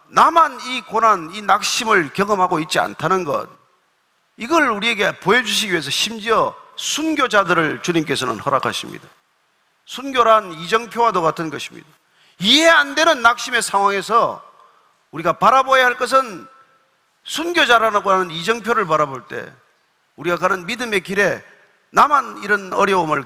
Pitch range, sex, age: 170-255 Hz, male, 40-59